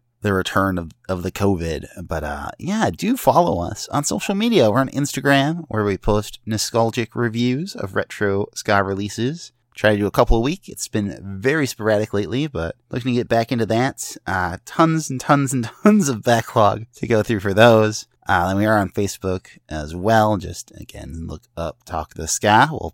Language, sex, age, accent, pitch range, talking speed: English, male, 30-49, American, 95-135 Hz, 195 wpm